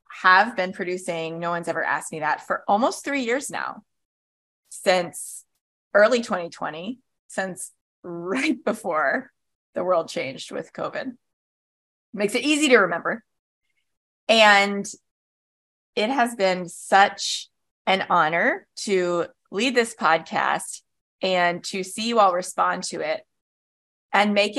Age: 20-39